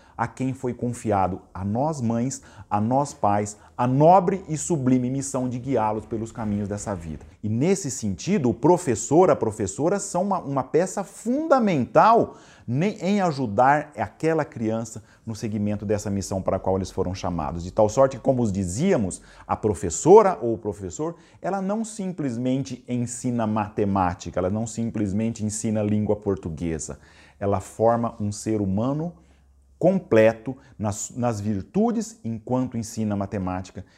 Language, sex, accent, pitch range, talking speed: Portuguese, male, Brazilian, 105-140 Hz, 145 wpm